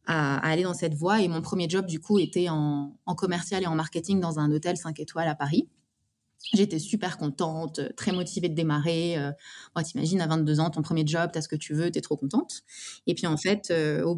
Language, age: French, 20-39